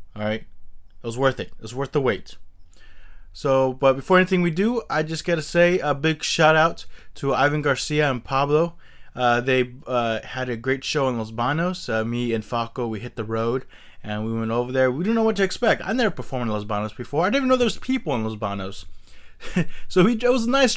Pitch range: 110-160 Hz